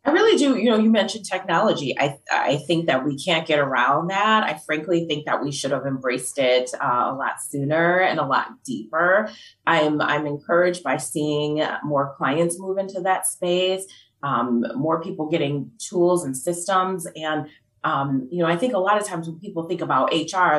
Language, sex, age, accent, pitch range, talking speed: English, female, 30-49, American, 145-180 Hz, 195 wpm